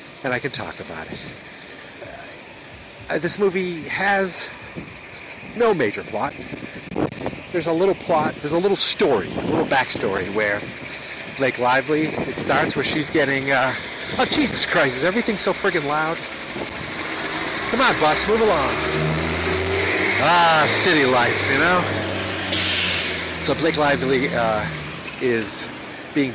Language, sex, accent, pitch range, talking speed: English, male, American, 110-150 Hz, 130 wpm